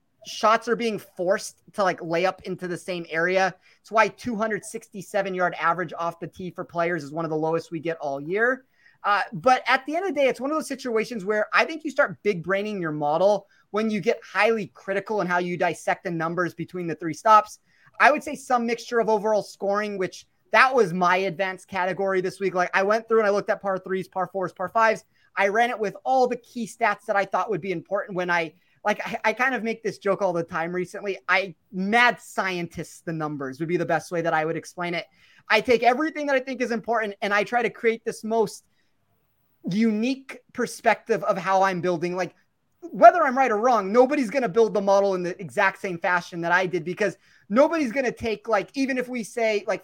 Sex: male